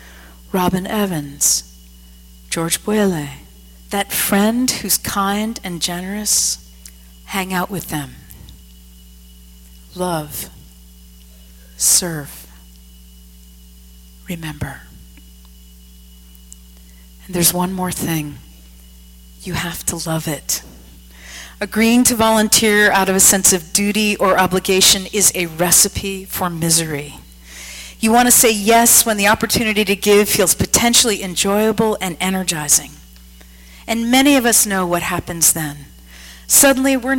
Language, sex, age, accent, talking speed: English, female, 40-59, American, 110 wpm